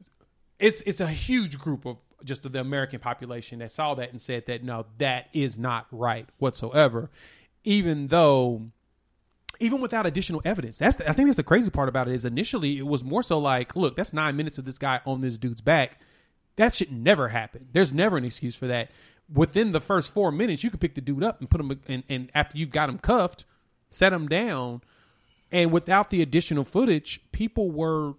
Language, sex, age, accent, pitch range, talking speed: English, male, 30-49, American, 130-170 Hz, 210 wpm